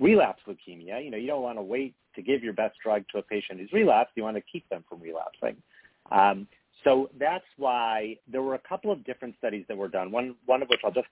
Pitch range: 95-125 Hz